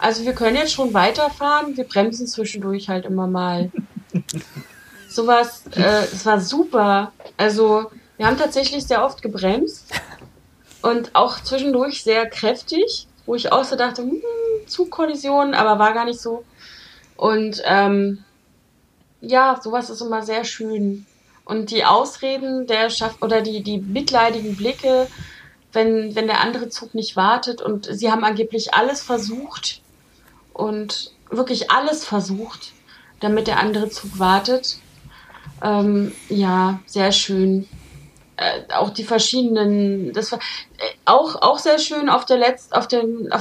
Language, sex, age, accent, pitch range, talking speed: German, female, 30-49, German, 205-255 Hz, 130 wpm